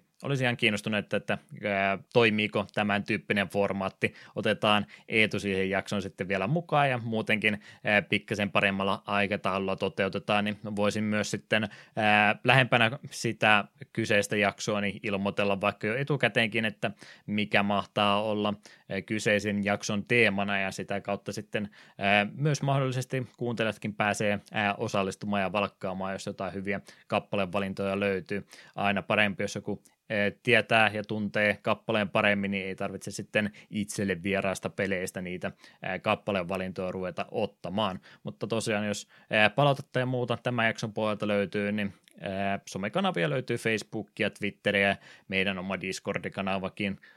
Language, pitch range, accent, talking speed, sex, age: Finnish, 100-110 Hz, native, 125 wpm, male, 20-39